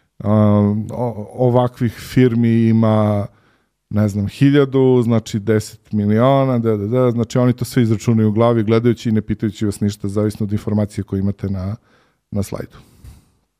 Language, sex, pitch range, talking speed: English, male, 105-130 Hz, 150 wpm